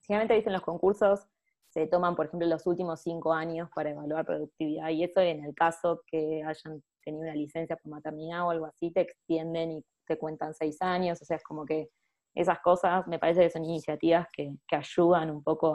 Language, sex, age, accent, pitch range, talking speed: Spanish, female, 20-39, Argentinian, 155-185 Hz, 205 wpm